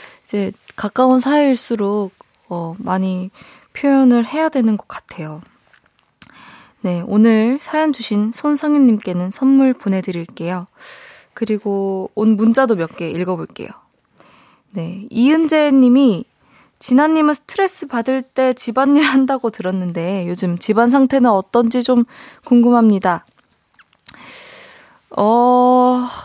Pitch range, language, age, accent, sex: 185-255 Hz, Korean, 20-39, native, female